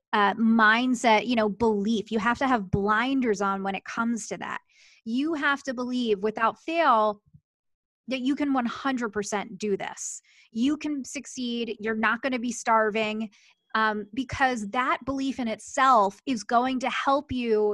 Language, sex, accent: English, female, American